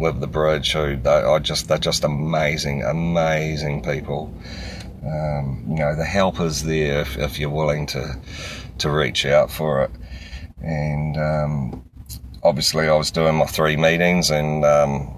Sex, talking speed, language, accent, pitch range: male, 160 wpm, English, Australian, 75-90 Hz